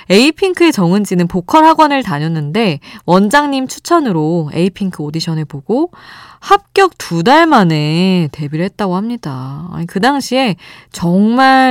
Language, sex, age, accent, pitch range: Korean, female, 20-39, native, 155-240 Hz